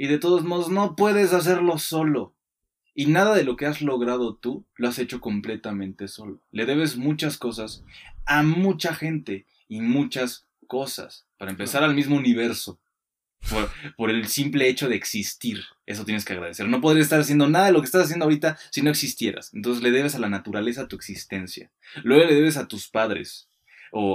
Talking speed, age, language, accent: 190 wpm, 20-39, Spanish, Mexican